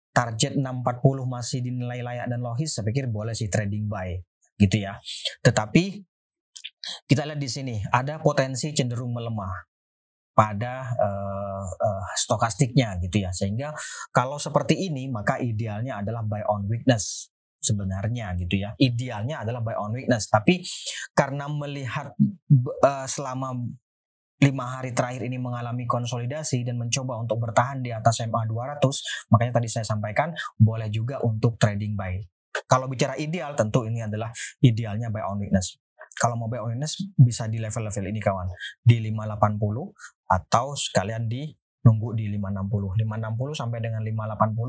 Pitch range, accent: 110-135 Hz, native